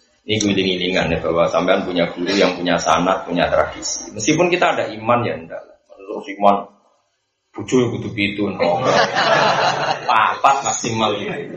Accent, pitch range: native, 115-155 Hz